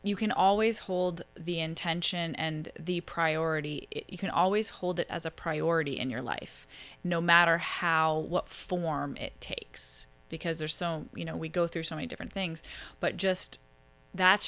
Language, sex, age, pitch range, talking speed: English, female, 20-39, 150-180 Hz, 175 wpm